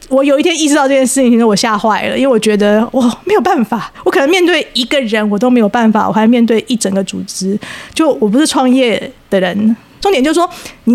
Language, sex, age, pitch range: Chinese, female, 20-39, 215-275 Hz